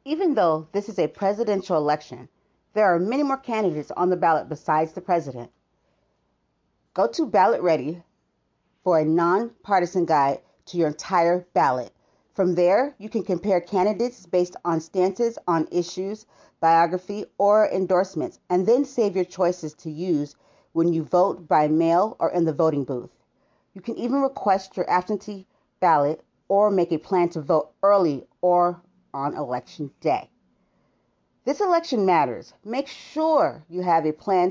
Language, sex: English, female